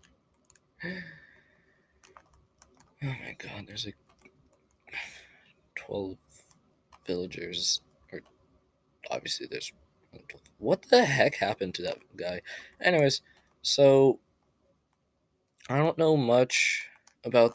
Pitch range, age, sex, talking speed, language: 95-120 Hz, 20-39, male, 85 wpm, English